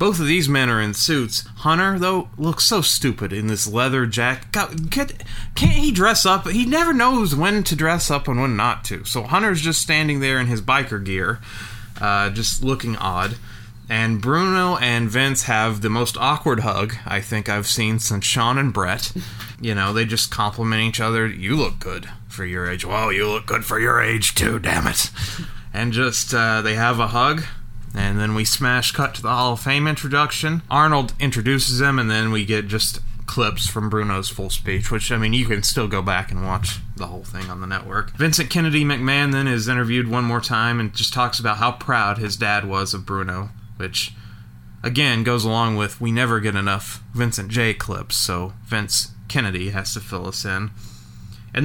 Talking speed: 200 wpm